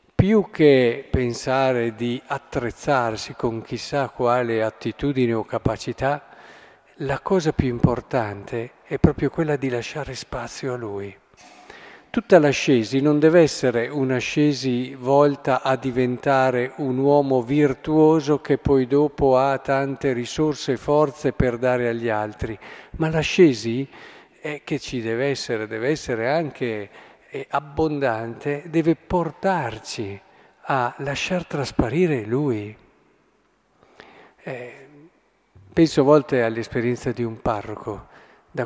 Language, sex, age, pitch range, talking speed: Italian, male, 50-69, 120-150 Hz, 115 wpm